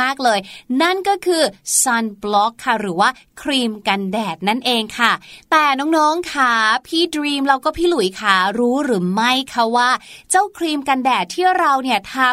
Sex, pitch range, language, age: female, 210-285 Hz, Thai, 20-39